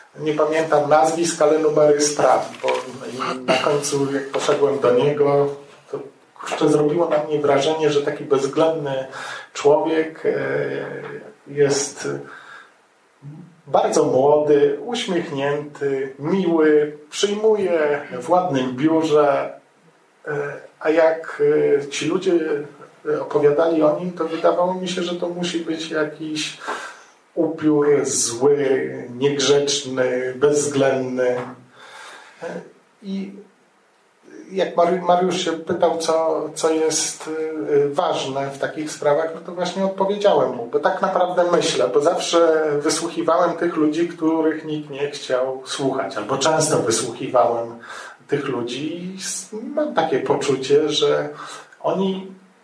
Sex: male